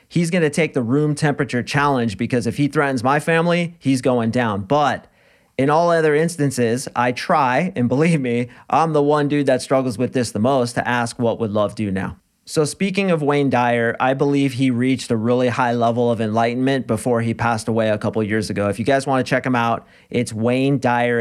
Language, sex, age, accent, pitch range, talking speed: English, male, 30-49, American, 115-135 Hz, 225 wpm